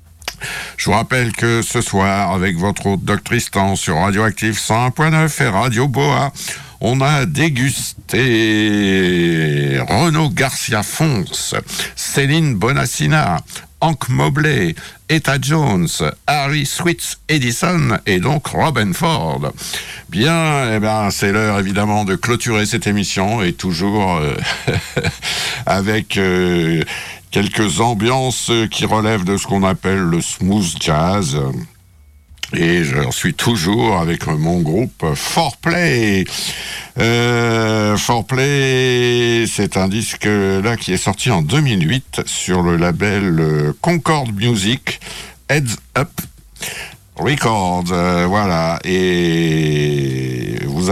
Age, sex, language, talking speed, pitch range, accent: 60-79, male, French, 105 wpm, 95-135 Hz, French